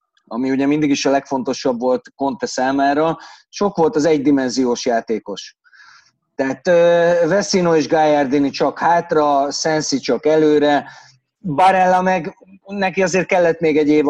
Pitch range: 130-155 Hz